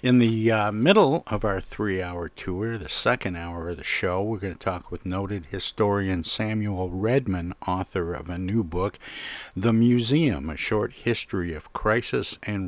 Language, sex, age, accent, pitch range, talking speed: English, male, 60-79, American, 90-105 Hz, 170 wpm